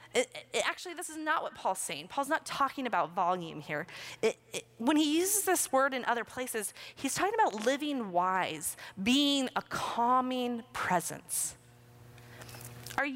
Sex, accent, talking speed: female, American, 140 wpm